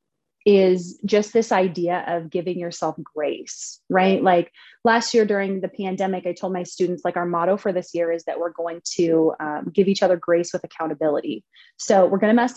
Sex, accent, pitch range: female, American, 170-205 Hz